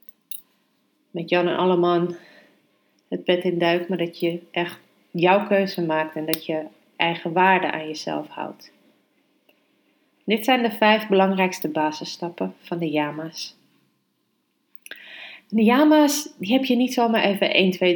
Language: Dutch